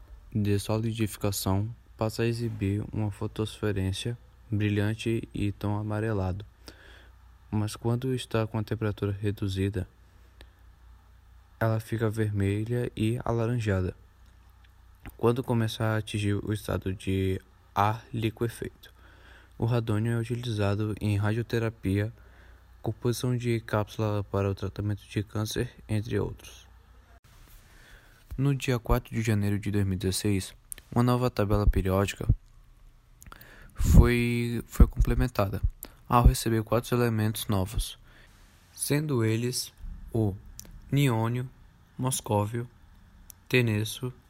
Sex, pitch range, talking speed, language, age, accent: male, 95-115 Hz, 100 wpm, Portuguese, 20-39, Brazilian